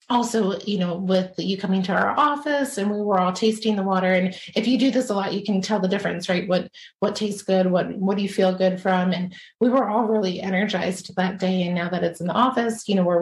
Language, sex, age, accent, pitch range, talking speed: English, female, 30-49, American, 180-205 Hz, 265 wpm